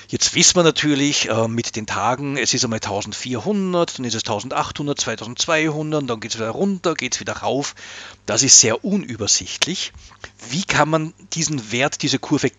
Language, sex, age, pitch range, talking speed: German, male, 50-69, 110-150 Hz, 170 wpm